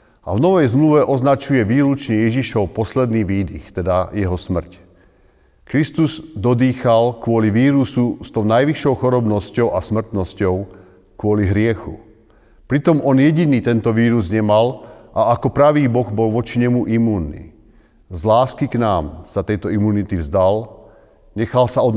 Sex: male